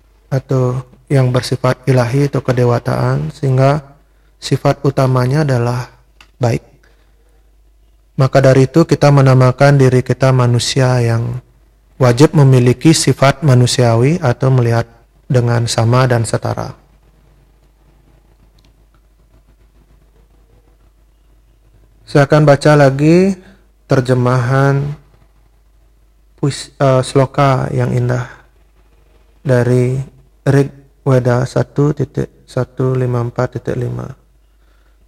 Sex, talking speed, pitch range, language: male, 75 wpm, 120-140 Hz, Indonesian